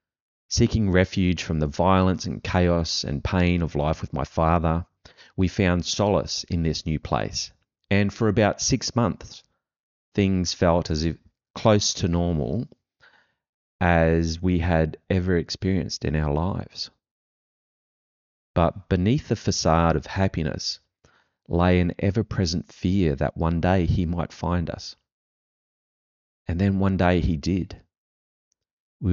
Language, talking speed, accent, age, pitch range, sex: English, 135 wpm, Australian, 30-49, 80-95 Hz, male